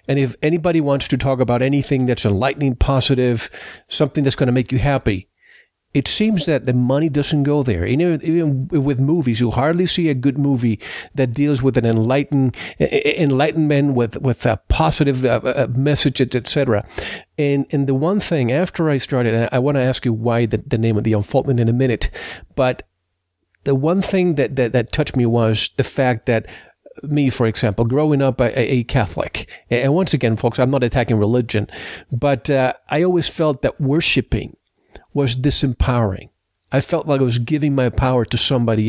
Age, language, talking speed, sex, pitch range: 40-59, English, 180 wpm, male, 120-150 Hz